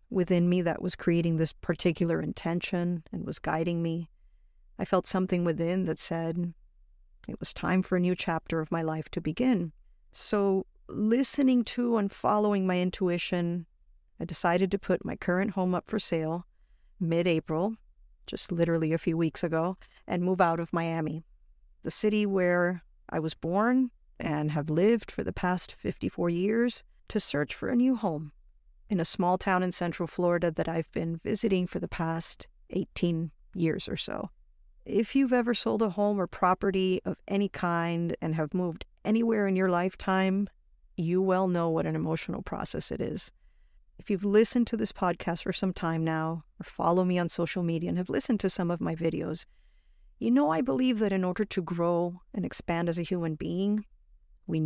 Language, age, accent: English, 50-69, American